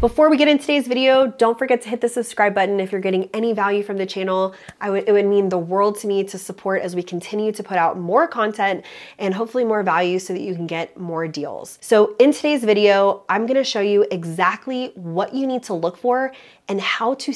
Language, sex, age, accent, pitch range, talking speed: English, female, 20-39, American, 185-235 Hz, 230 wpm